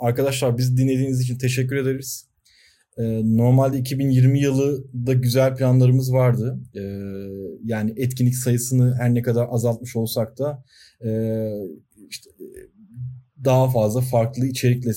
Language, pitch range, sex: Turkish, 115-130 Hz, male